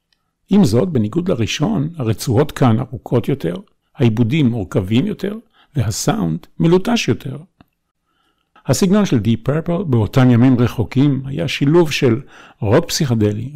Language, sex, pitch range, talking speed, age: Hebrew, male, 115-145 Hz, 115 wpm, 50-69